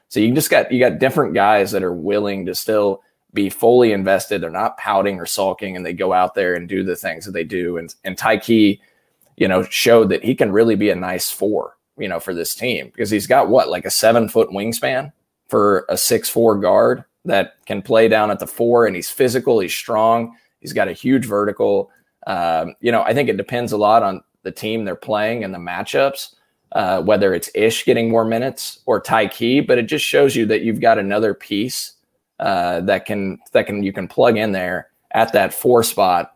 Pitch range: 95-115 Hz